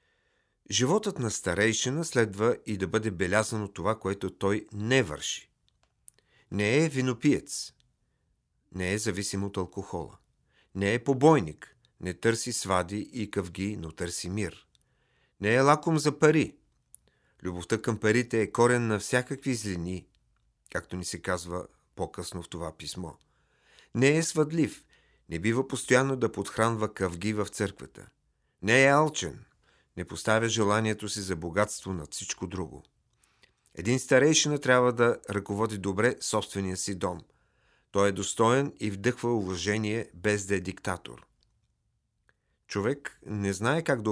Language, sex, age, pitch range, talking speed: Bulgarian, male, 50-69, 95-125 Hz, 135 wpm